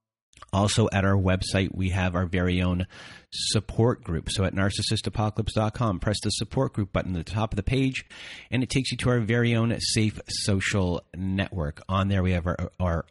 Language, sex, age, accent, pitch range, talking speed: English, male, 30-49, American, 95-115 Hz, 190 wpm